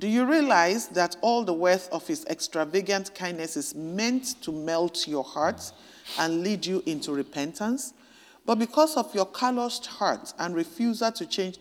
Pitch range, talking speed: 160-225 Hz, 165 wpm